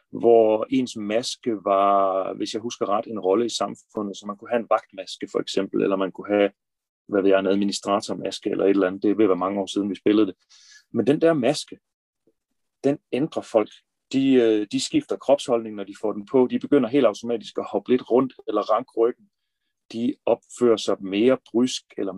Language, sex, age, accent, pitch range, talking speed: Danish, male, 30-49, native, 105-140 Hz, 200 wpm